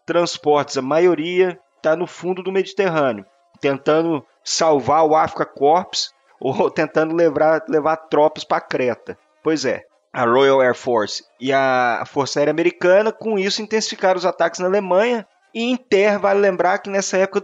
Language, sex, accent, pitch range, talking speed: Portuguese, male, Brazilian, 160-210 Hz, 160 wpm